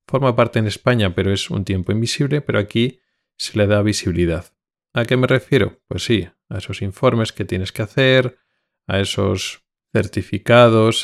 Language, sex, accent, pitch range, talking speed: Spanish, male, Spanish, 95-120 Hz, 170 wpm